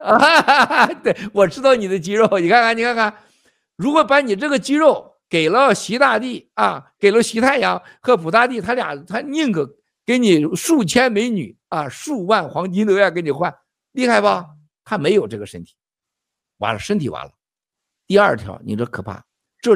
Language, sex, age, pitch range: Chinese, male, 50-69, 145-230 Hz